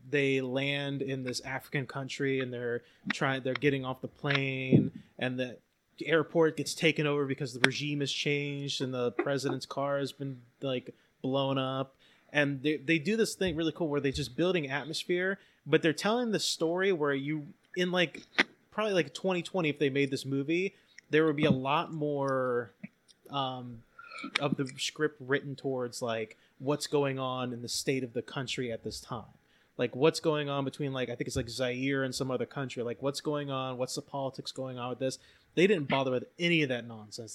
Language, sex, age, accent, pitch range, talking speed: English, male, 20-39, American, 130-160 Hz, 200 wpm